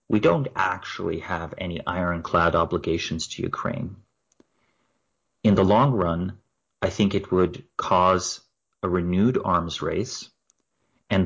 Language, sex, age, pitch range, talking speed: English, male, 30-49, 85-100 Hz, 125 wpm